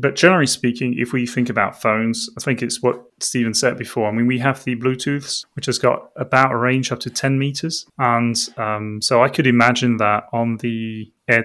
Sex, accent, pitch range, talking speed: male, British, 115-125 Hz, 215 wpm